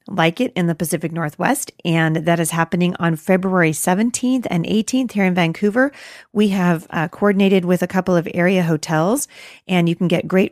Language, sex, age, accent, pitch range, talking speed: English, female, 40-59, American, 160-205 Hz, 190 wpm